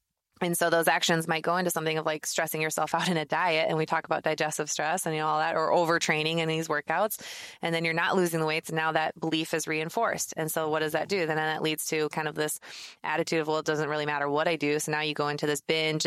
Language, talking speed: English, 280 wpm